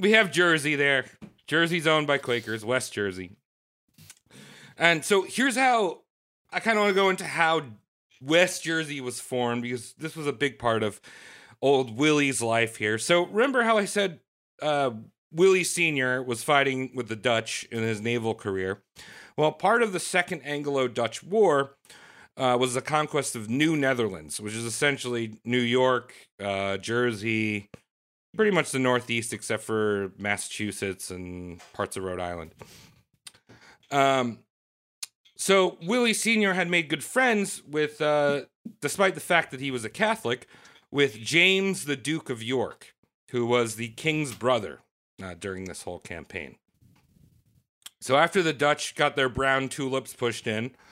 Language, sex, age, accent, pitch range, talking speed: English, male, 30-49, American, 115-160 Hz, 155 wpm